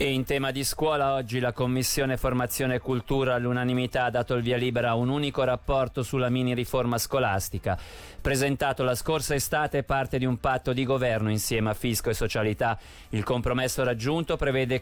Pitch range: 115-135 Hz